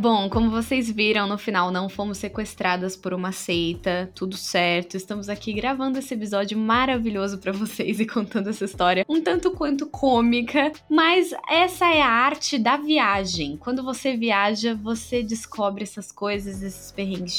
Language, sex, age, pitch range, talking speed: Portuguese, female, 10-29, 200-265 Hz, 160 wpm